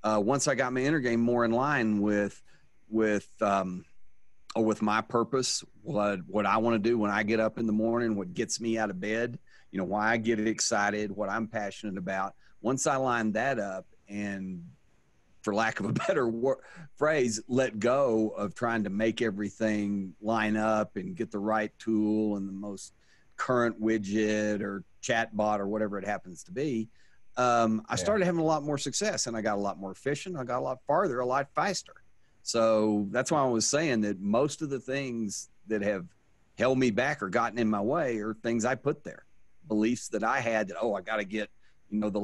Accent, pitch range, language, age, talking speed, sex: American, 105-125 Hz, English, 40-59, 210 wpm, male